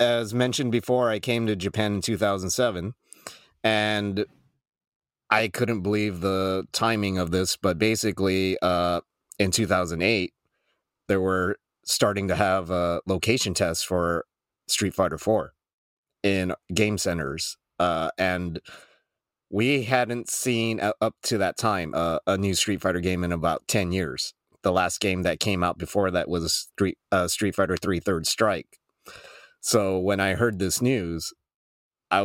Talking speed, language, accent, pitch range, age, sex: 150 wpm, English, American, 90-105 Hz, 30-49, male